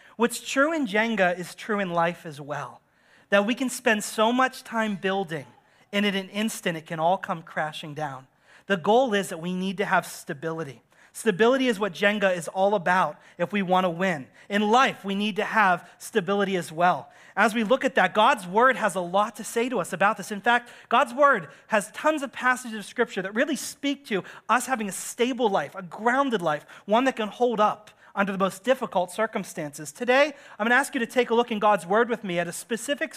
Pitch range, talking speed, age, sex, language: 185-240 Hz, 225 wpm, 30-49, male, English